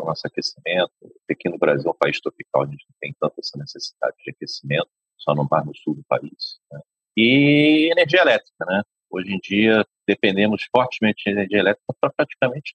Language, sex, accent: Portuguese, male, Brazilian